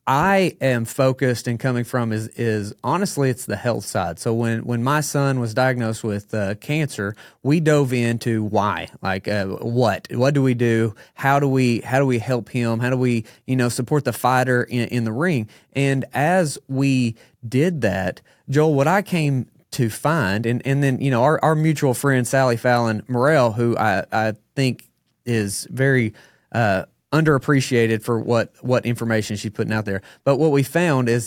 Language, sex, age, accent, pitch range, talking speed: English, male, 30-49, American, 115-140 Hz, 190 wpm